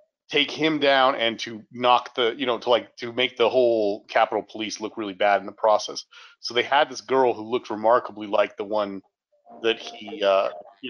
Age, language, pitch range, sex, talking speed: 30-49, English, 105-135 Hz, male, 210 wpm